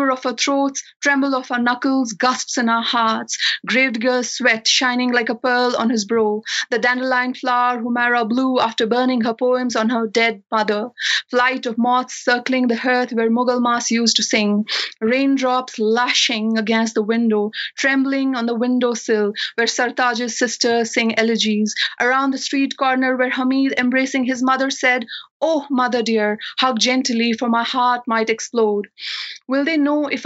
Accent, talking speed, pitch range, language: Indian, 165 wpm, 235-260 Hz, English